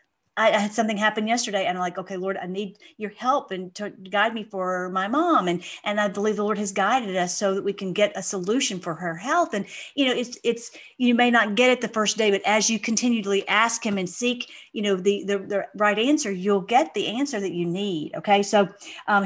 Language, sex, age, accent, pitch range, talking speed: English, female, 40-59, American, 195-240 Hz, 245 wpm